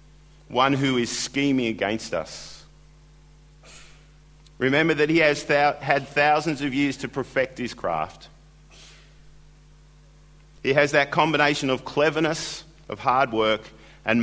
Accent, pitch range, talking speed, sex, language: Australian, 125-150 Hz, 120 wpm, male, English